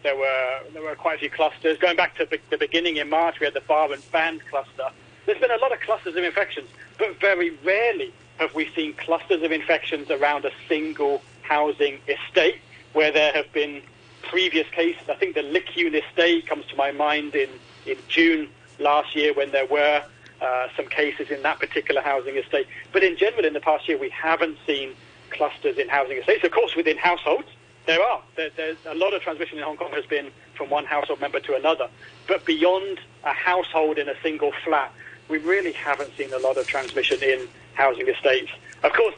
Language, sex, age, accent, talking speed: English, male, 40-59, British, 205 wpm